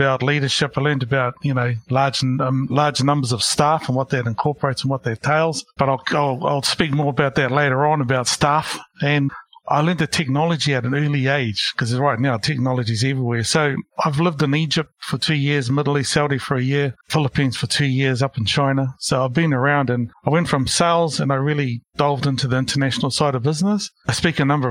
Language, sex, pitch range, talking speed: English, male, 130-150 Hz, 220 wpm